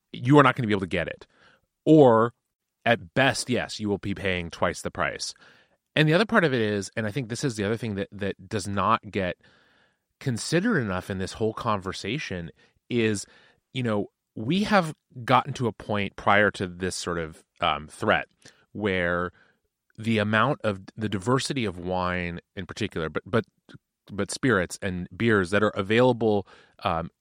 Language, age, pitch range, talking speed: English, 30-49, 95-120 Hz, 185 wpm